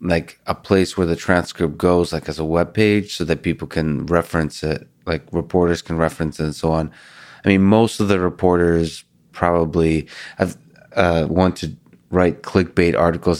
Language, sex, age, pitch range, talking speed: English, male, 20-39, 85-95 Hz, 175 wpm